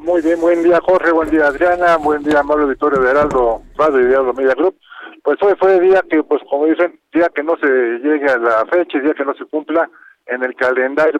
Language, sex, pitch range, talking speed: Spanish, male, 135-170 Hz, 230 wpm